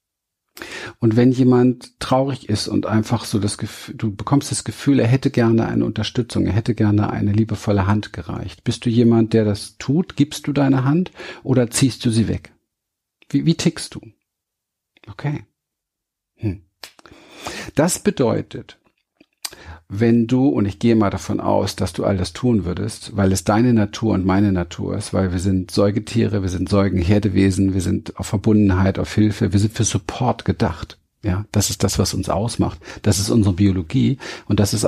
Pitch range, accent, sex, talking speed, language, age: 95-115 Hz, German, male, 175 wpm, German, 50-69